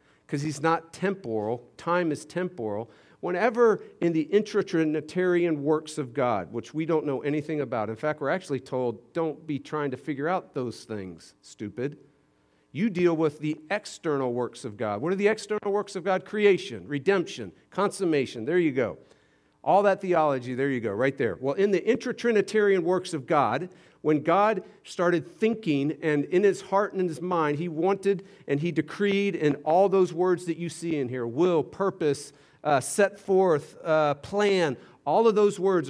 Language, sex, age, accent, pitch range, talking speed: English, male, 50-69, American, 140-185 Hz, 180 wpm